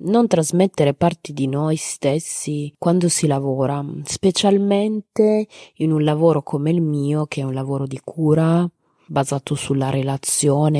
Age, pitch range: 20-39, 140-155 Hz